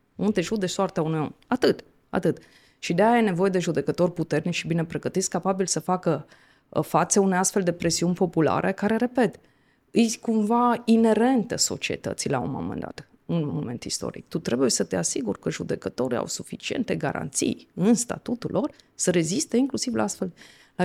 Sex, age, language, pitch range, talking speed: female, 20-39, Romanian, 165-220 Hz, 175 wpm